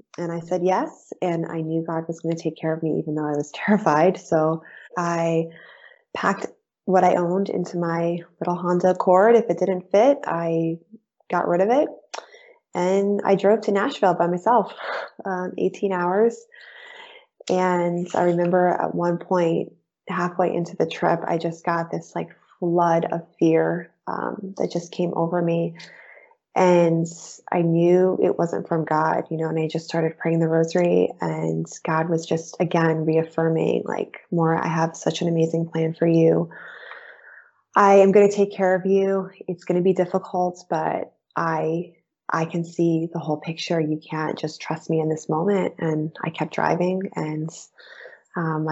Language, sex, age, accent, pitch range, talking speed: English, female, 20-39, American, 165-185 Hz, 175 wpm